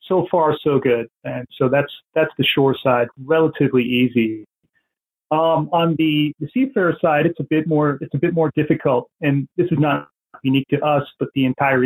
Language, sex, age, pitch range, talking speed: English, male, 30-49, 130-155 Hz, 190 wpm